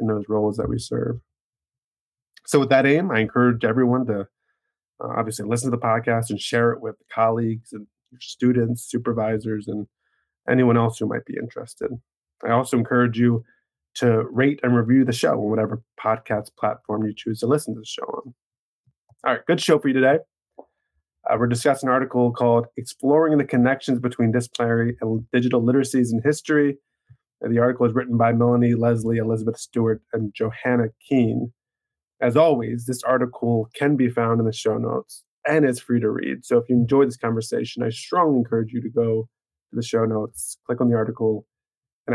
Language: English